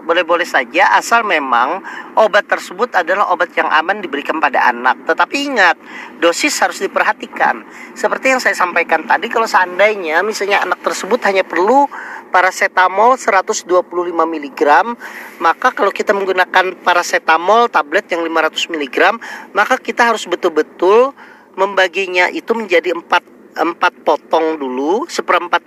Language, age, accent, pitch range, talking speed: Indonesian, 40-59, native, 165-215 Hz, 125 wpm